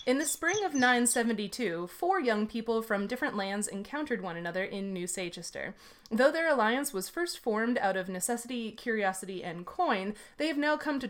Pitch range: 195-265 Hz